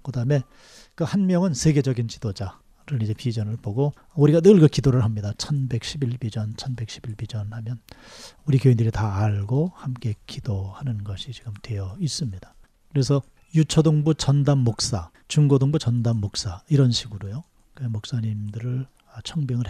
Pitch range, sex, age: 110-145 Hz, male, 40-59